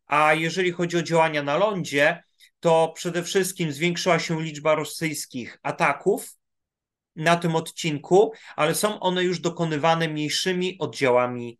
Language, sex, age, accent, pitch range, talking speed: Polish, male, 30-49, native, 130-170 Hz, 130 wpm